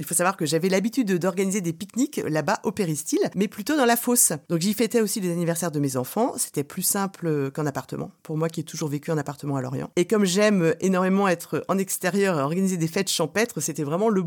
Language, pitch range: French, 160-205 Hz